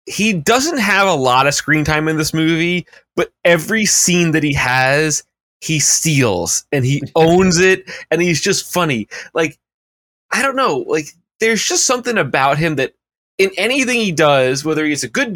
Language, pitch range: English, 155-230 Hz